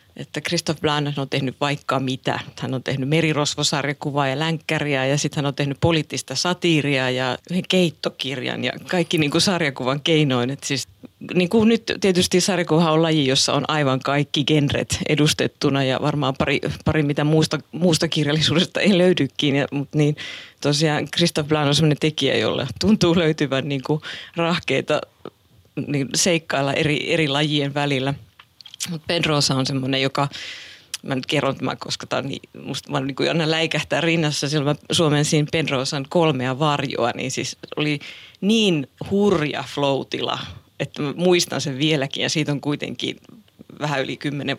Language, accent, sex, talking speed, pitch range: Finnish, native, female, 145 wpm, 140-165 Hz